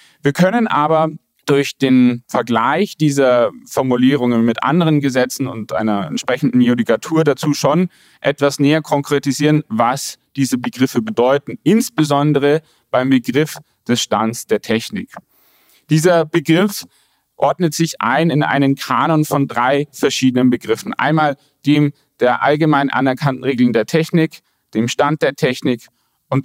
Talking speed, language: 125 wpm, German